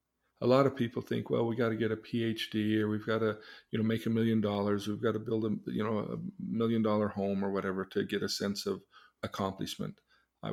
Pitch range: 95-115 Hz